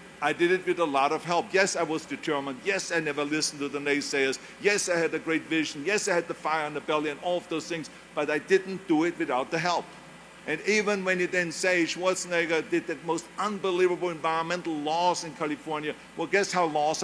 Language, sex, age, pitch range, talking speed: English, male, 50-69, 155-185 Hz, 230 wpm